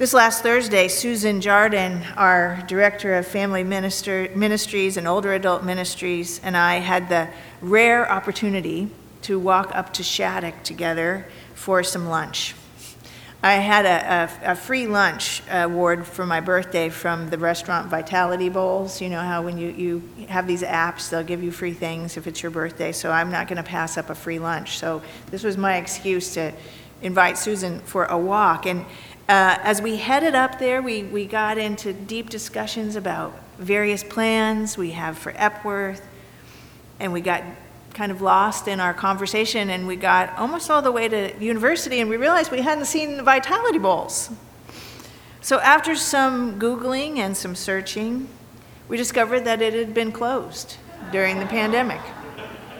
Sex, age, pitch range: female, 40-59, 175-220 Hz